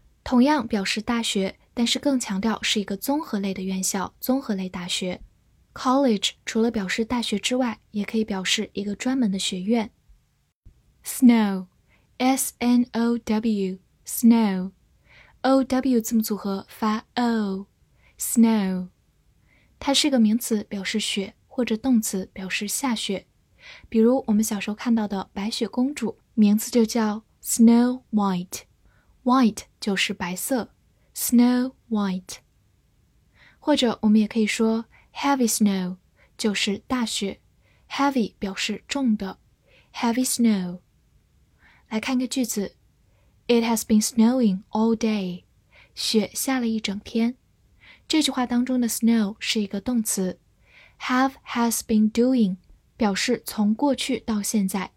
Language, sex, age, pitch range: Chinese, female, 10-29, 200-240 Hz